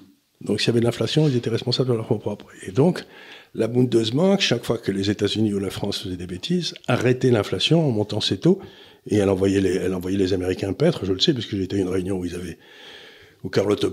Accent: French